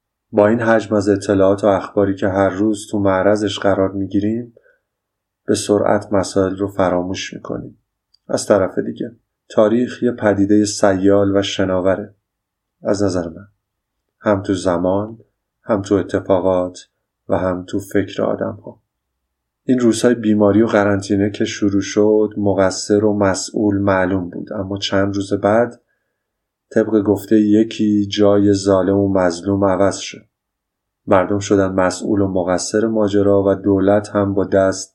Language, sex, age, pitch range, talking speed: Persian, male, 30-49, 95-105 Hz, 140 wpm